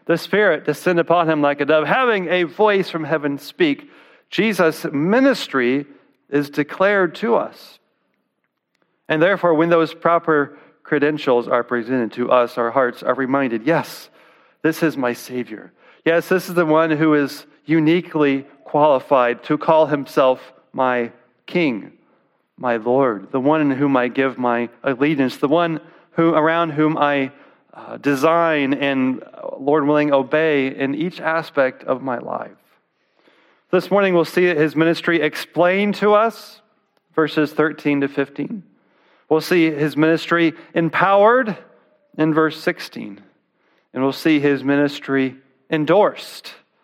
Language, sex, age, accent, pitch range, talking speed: English, male, 40-59, American, 130-165 Hz, 140 wpm